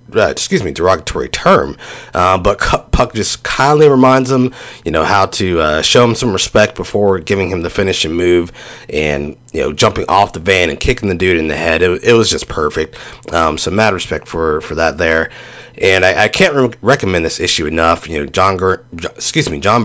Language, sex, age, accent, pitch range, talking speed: English, male, 30-49, American, 85-110 Hz, 210 wpm